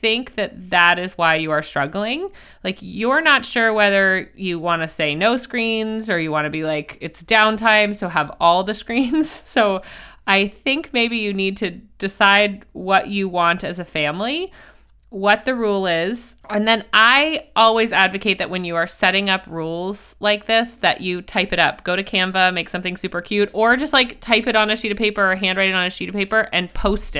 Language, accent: English, American